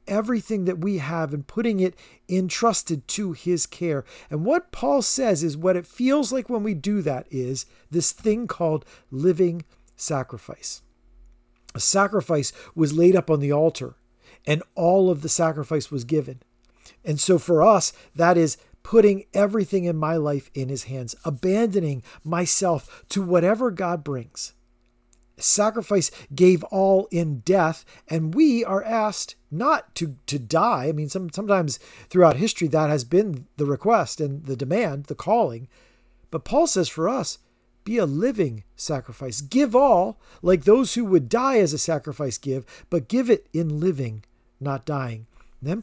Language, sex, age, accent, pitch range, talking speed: English, male, 40-59, American, 135-195 Hz, 160 wpm